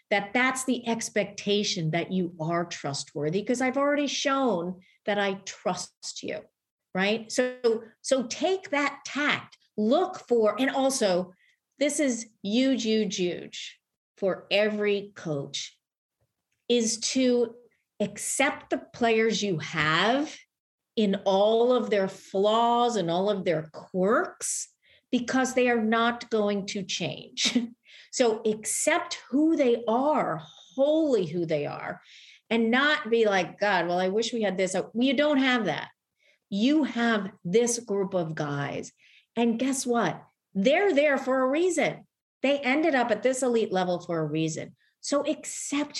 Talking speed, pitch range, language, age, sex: 140 wpm, 195-265 Hz, English, 50-69, female